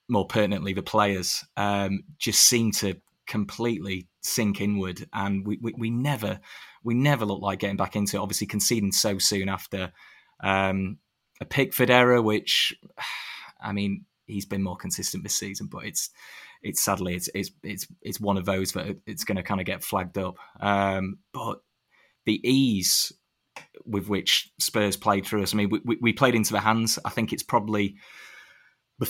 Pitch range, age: 95-110 Hz, 20-39